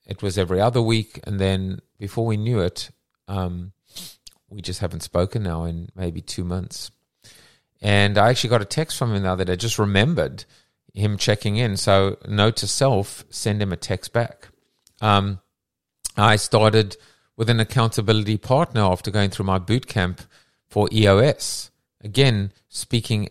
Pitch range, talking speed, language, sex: 95-115 Hz, 160 wpm, English, male